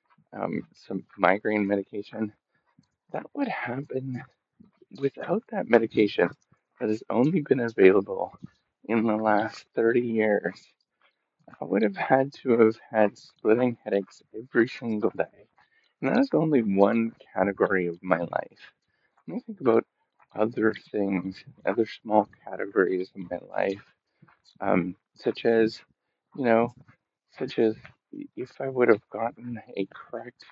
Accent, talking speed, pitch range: American, 130 wpm, 105-145 Hz